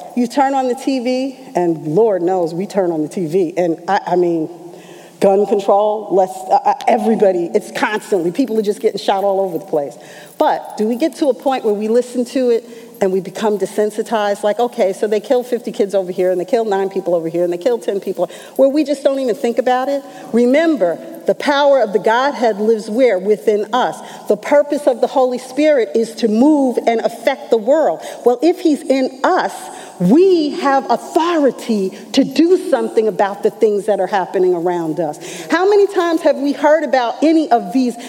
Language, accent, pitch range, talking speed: English, American, 210-280 Hz, 205 wpm